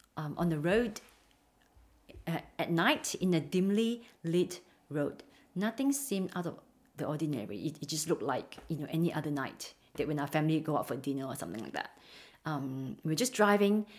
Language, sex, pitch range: English, female, 165-220 Hz